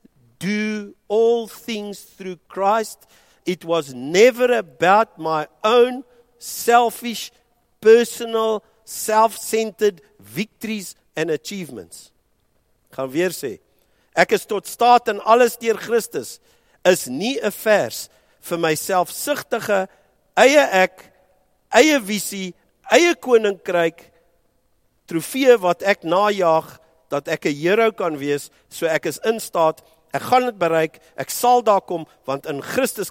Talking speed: 120 wpm